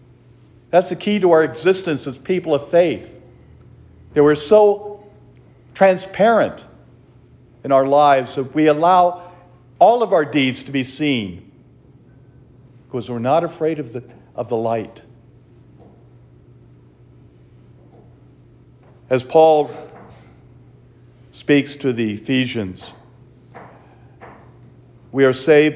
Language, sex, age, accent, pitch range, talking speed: English, male, 50-69, American, 125-170 Hz, 100 wpm